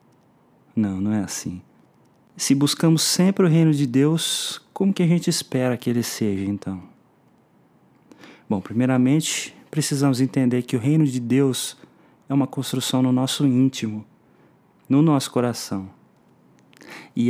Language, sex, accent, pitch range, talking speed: Portuguese, male, Brazilian, 115-145 Hz, 135 wpm